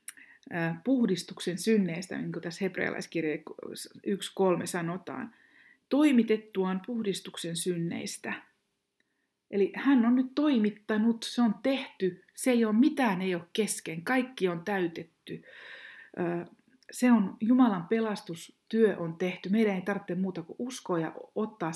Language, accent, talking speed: Finnish, native, 120 wpm